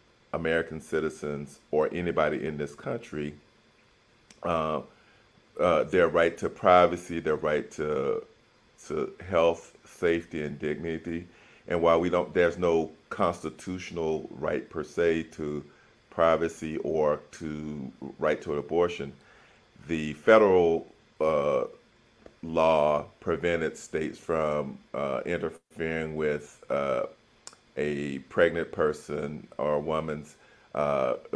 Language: English